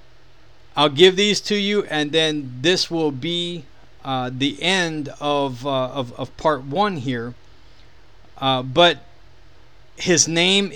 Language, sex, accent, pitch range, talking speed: English, male, American, 120-170 Hz, 135 wpm